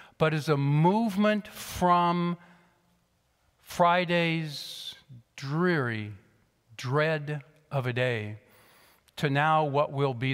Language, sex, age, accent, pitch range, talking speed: English, male, 50-69, American, 125-180 Hz, 95 wpm